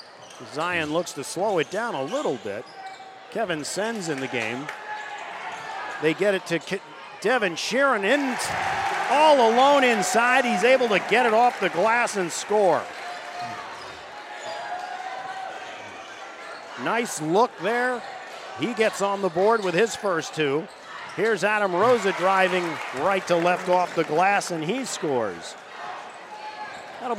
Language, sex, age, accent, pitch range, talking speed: English, male, 50-69, American, 180-255 Hz, 130 wpm